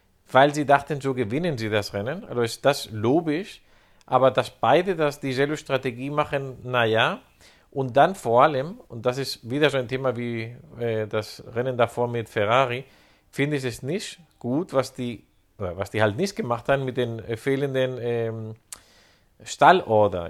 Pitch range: 120-150 Hz